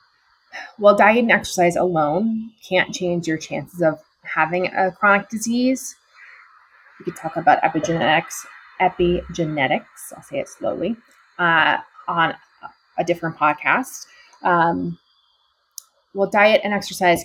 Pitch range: 165-200 Hz